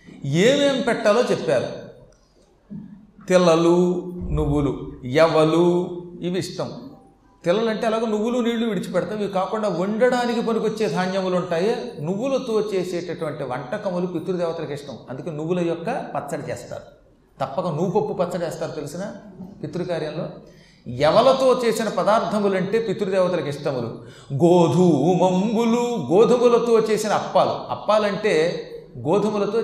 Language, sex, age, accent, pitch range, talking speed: Telugu, male, 40-59, native, 170-215 Hz, 95 wpm